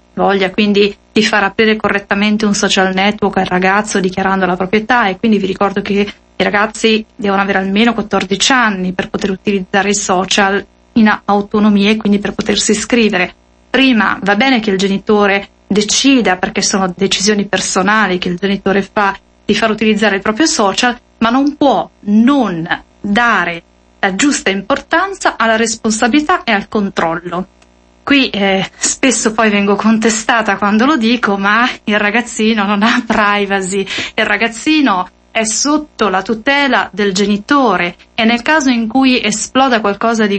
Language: Italian